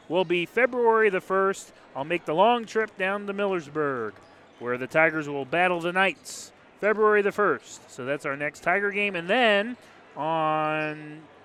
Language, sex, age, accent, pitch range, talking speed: English, male, 30-49, American, 150-200 Hz, 170 wpm